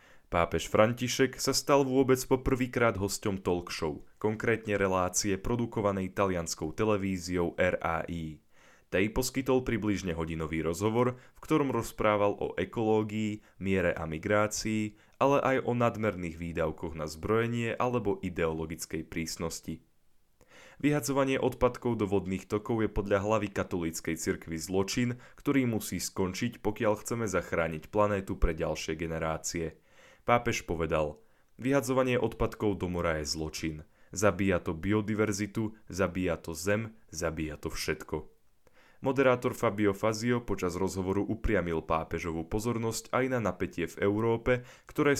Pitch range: 85-115 Hz